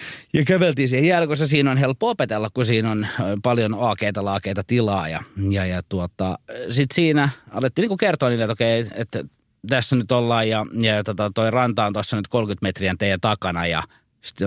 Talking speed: 180 wpm